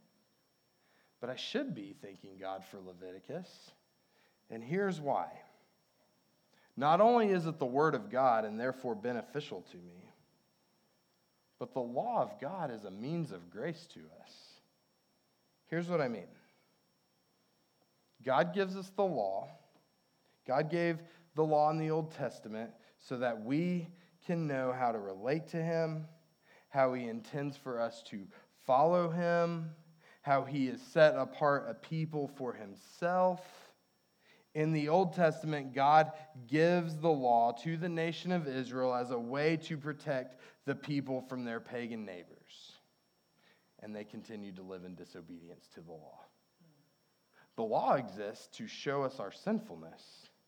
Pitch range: 125-170 Hz